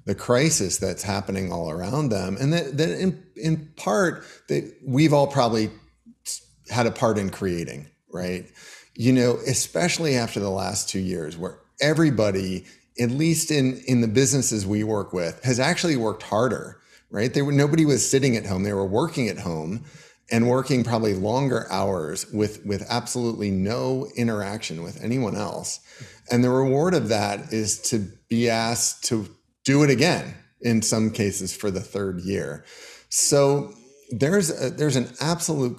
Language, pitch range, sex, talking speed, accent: English, 95-130 Hz, male, 165 wpm, American